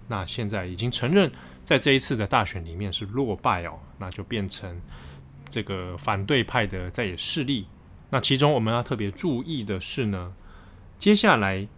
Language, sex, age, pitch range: Chinese, male, 20-39, 100-135 Hz